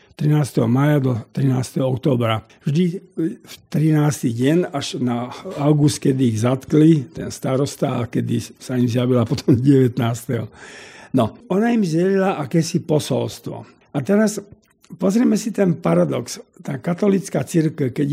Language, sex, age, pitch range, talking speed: Slovak, male, 50-69, 130-165 Hz, 130 wpm